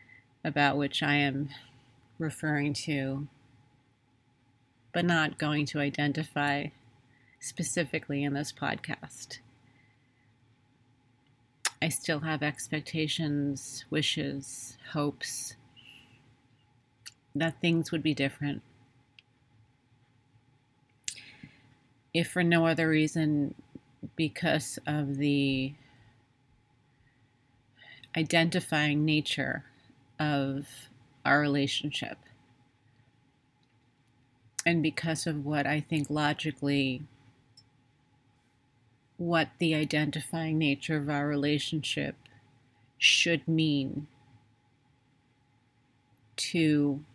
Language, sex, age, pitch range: English, female, 40-59, 120-155 Hz